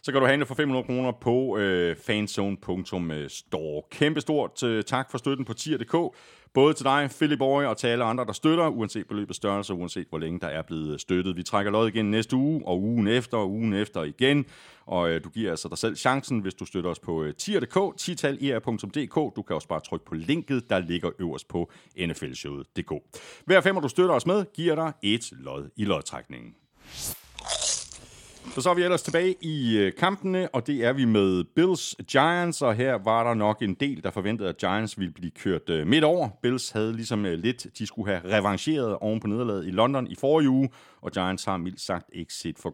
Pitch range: 95-140 Hz